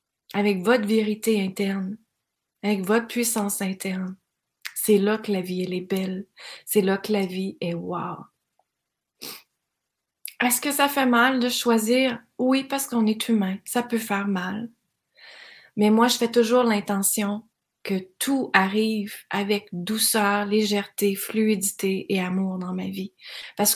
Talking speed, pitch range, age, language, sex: 145 wpm, 195-230 Hz, 30-49, French, female